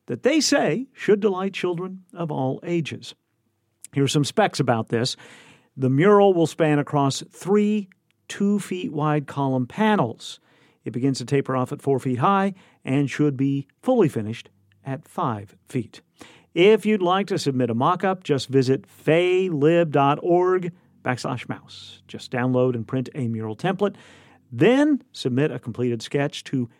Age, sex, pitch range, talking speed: 50-69, male, 125-180 Hz, 150 wpm